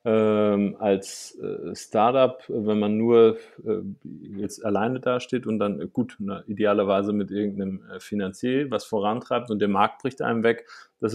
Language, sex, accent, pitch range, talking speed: German, male, German, 105-120 Hz, 160 wpm